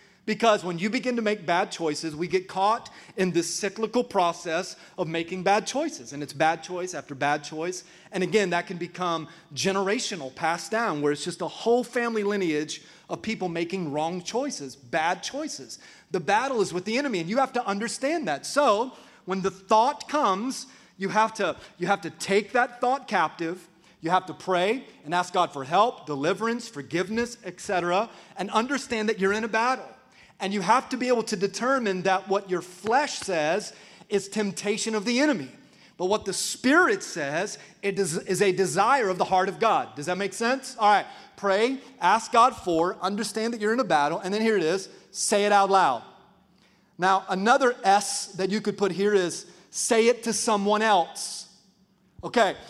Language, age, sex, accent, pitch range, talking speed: English, 30-49, male, American, 180-225 Hz, 190 wpm